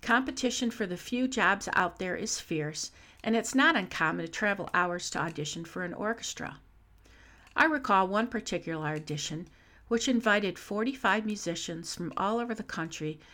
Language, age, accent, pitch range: English, 50-69, American, 155-220 Hz